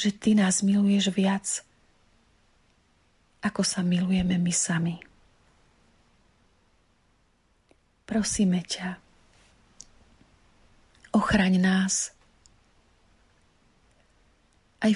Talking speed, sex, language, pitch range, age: 60 wpm, female, Slovak, 185-205 Hz, 40-59